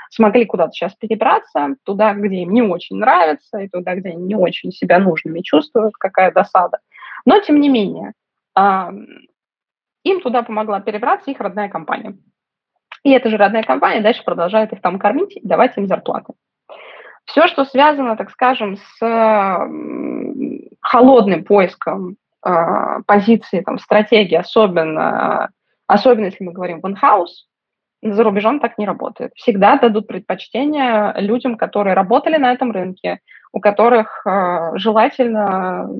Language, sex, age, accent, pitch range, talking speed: Russian, female, 20-39, native, 185-245 Hz, 135 wpm